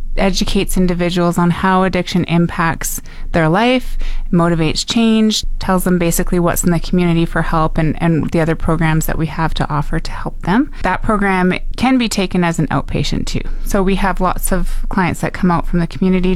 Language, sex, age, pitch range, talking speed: English, female, 20-39, 160-185 Hz, 195 wpm